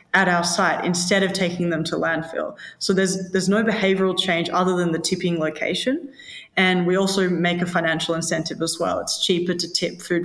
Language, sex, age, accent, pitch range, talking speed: English, female, 20-39, Australian, 165-195 Hz, 200 wpm